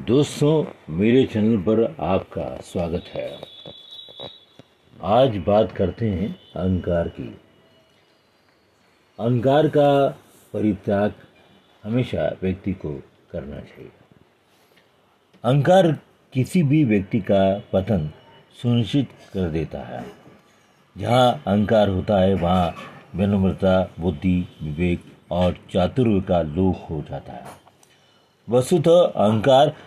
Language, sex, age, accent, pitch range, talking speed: Hindi, male, 50-69, native, 95-130 Hz, 95 wpm